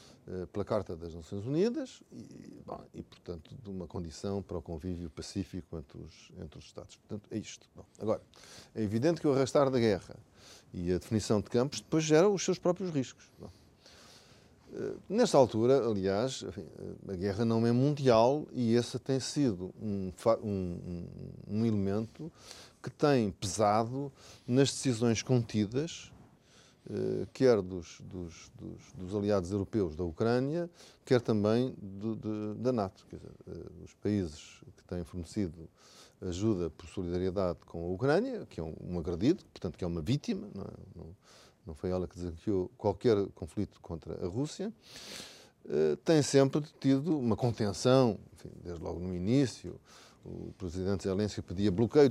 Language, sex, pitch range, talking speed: Portuguese, male, 90-130 Hz, 155 wpm